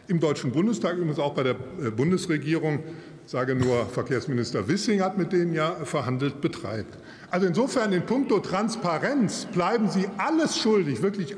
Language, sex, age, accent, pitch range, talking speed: German, male, 50-69, German, 135-180 Hz, 150 wpm